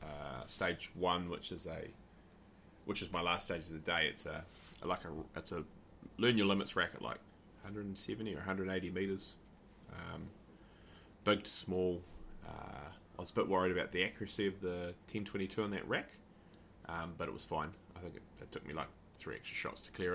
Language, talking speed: English, 220 wpm